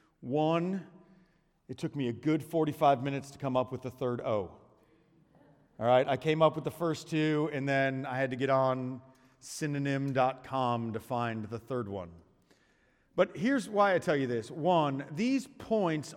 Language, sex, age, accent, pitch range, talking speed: English, male, 40-59, American, 140-190 Hz, 175 wpm